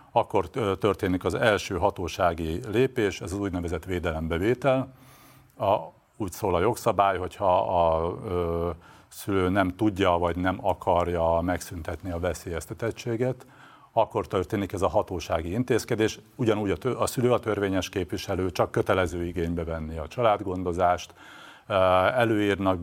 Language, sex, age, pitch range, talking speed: Hungarian, male, 50-69, 85-105 Hz, 120 wpm